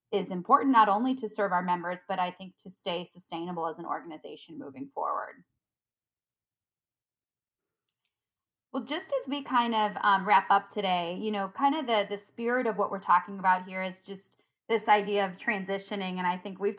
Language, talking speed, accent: English, 185 wpm, American